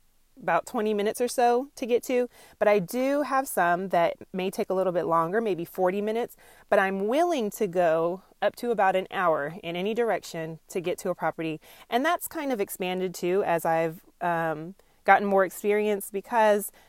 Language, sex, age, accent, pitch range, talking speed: English, female, 30-49, American, 180-230 Hz, 190 wpm